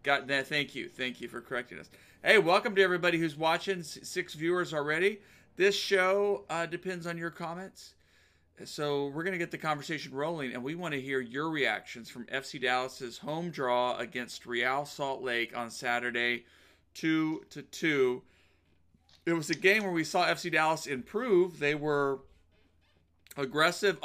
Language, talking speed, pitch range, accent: English, 165 wpm, 125-165 Hz, American